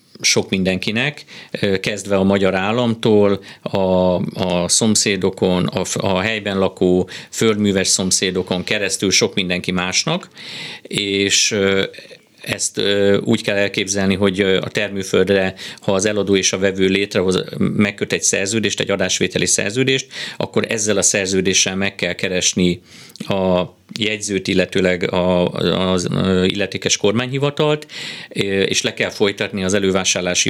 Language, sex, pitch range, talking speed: Hungarian, male, 95-105 Hz, 115 wpm